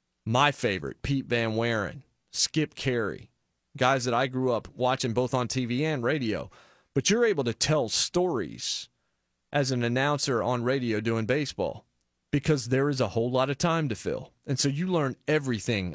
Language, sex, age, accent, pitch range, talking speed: English, male, 30-49, American, 110-145 Hz, 175 wpm